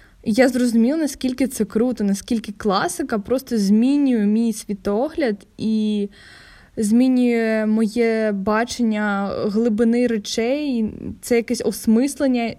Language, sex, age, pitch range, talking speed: Ukrainian, female, 10-29, 215-245 Hz, 95 wpm